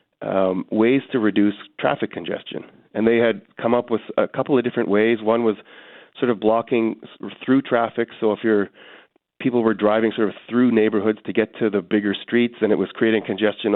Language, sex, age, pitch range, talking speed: English, male, 40-59, 105-120 Hz, 195 wpm